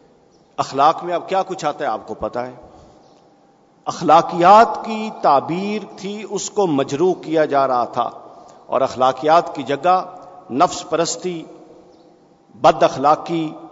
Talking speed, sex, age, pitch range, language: 130 wpm, male, 50-69, 150-200 Hz, Urdu